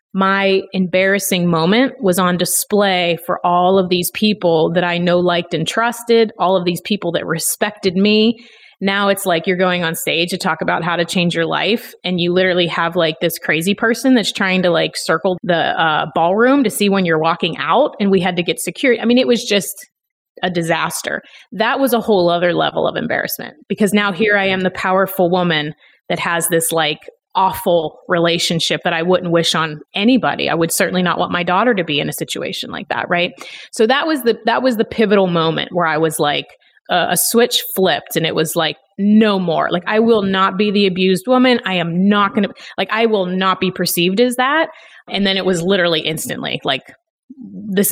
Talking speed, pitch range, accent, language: 210 wpm, 175-215 Hz, American, English